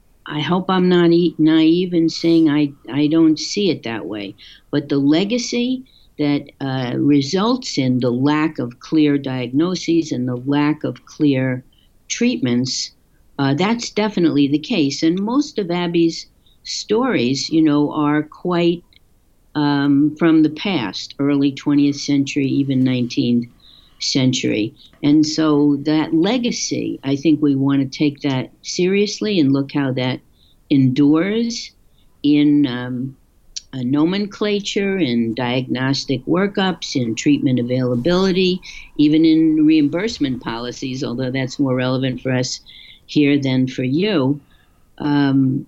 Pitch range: 135-170 Hz